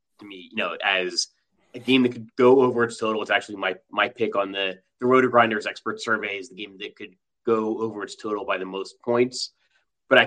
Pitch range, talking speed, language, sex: 110-135 Hz, 230 wpm, English, male